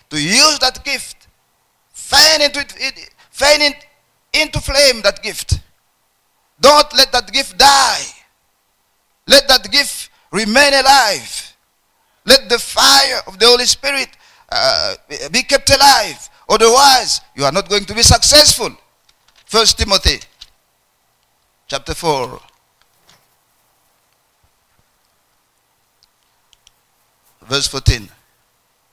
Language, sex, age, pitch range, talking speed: English, male, 50-69, 185-275 Hz, 100 wpm